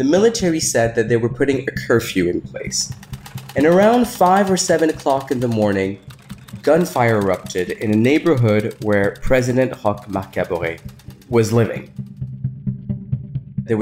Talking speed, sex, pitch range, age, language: 140 wpm, male, 110-165 Hz, 30-49, English